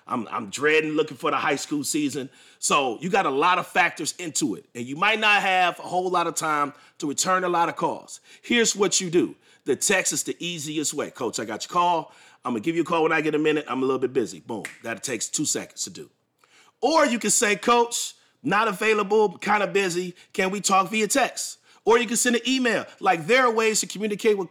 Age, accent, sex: 30-49, American, male